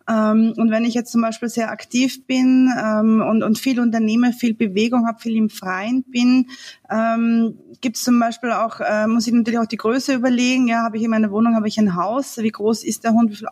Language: German